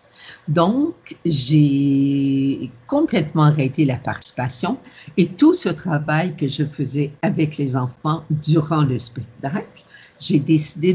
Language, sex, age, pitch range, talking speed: French, female, 50-69, 135-170 Hz, 115 wpm